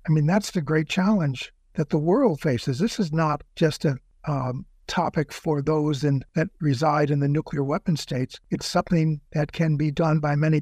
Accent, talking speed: American, 200 wpm